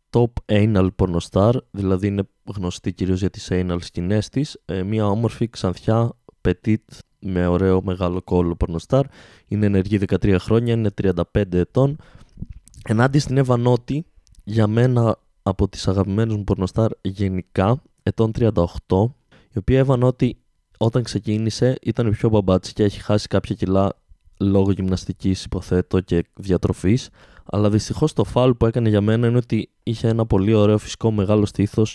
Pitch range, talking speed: 95-120 Hz, 145 wpm